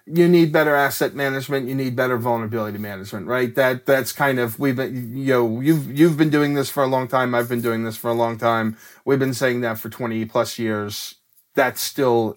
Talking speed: 225 wpm